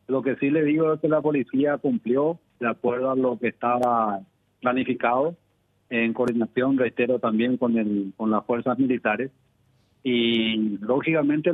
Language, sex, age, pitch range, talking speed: Spanish, male, 40-59, 120-145 Hz, 150 wpm